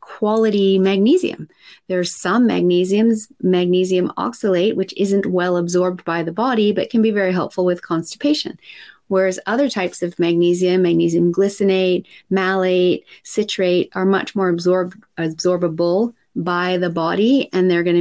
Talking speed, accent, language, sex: 135 wpm, American, English, female